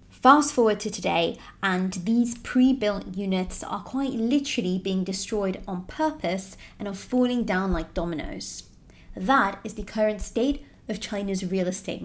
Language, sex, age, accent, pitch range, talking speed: English, female, 20-39, British, 190-270 Hz, 150 wpm